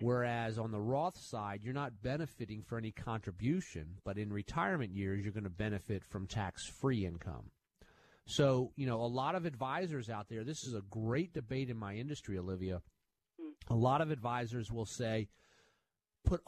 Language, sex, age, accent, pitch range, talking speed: English, male, 40-59, American, 105-145 Hz, 170 wpm